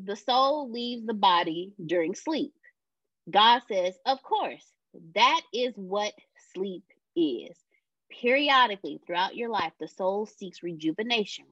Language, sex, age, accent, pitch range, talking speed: English, female, 20-39, American, 175-245 Hz, 125 wpm